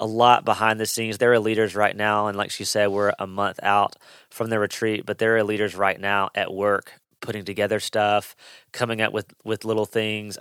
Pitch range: 95-110 Hz